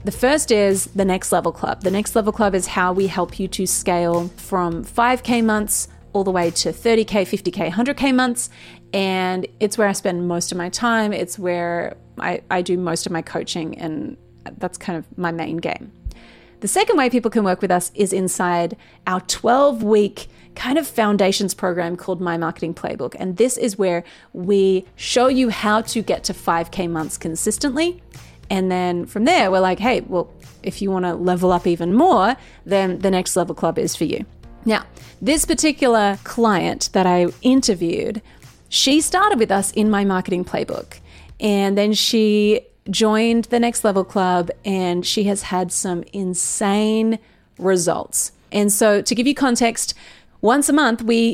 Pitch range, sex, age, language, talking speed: 180-225 Hz, female, 30-49, English, 180 wpm